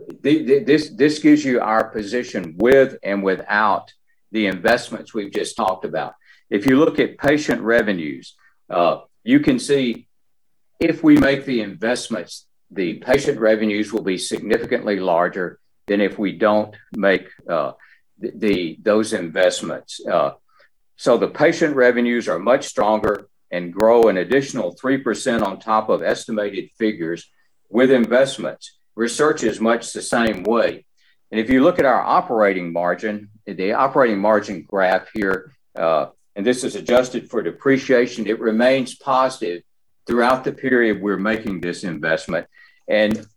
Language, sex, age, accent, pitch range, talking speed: English, male, 50-69, American, 105-130 Hz, 145 wpm